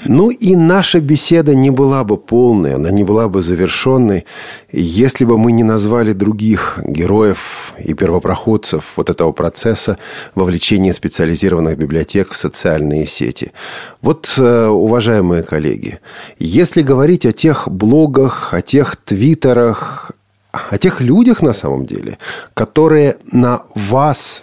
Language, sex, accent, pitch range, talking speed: Russian, male, native, 95-135 Hz, 125 wpm